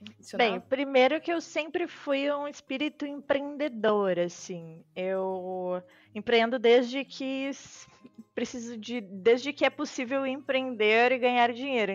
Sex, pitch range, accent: female, 215-260 Hz, Brazilian